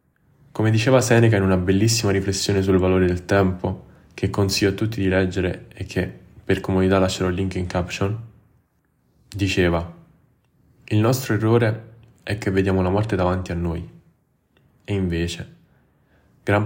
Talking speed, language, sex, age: 150 wpm, Italian, male, 10-29